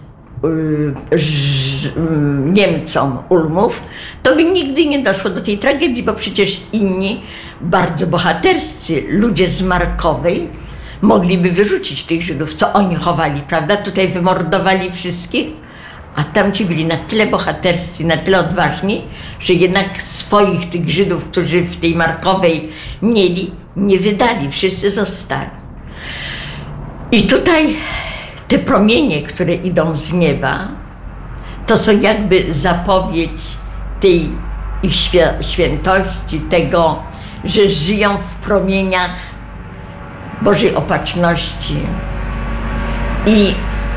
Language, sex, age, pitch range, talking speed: Polish, female, 50-69, 155-195 Hz, 100 wpm